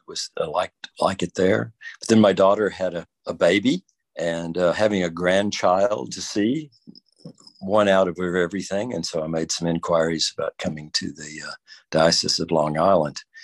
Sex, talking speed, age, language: male, 180 wpm, 50-69, English